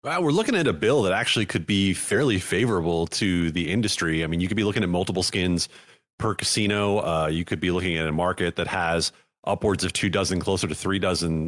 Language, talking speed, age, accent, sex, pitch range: English, 225 wpm, 30-49, American, male, 90-105 Hz